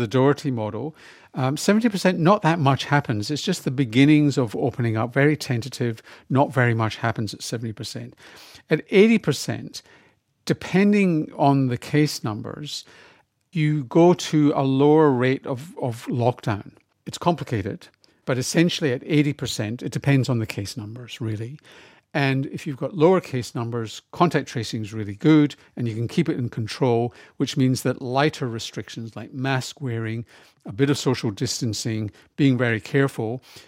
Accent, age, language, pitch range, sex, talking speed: British, 50-69, English, 115-145 Hz, male, 155 wpm